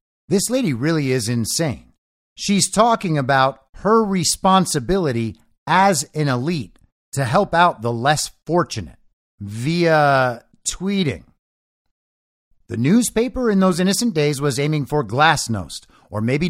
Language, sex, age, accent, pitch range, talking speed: English, male, 50-69, American, 120-175 Hz, 120 wpm